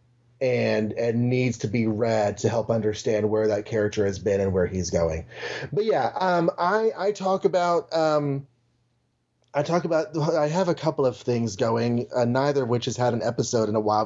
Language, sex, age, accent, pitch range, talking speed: English, male, 30-49, American, 110-135 Hz, 200 wpm